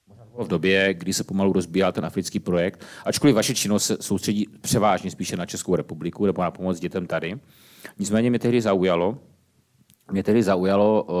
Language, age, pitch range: Czech, 40-59, 85-100 Hz